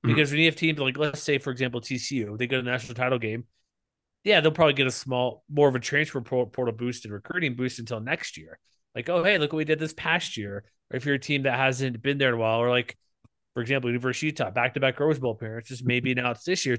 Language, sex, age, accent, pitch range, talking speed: English, male, 30-49, American, 120-145 Hz, 270 wpm